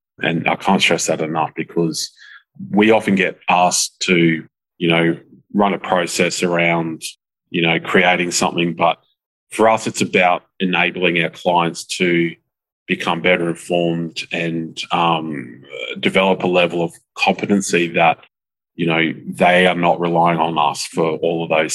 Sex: male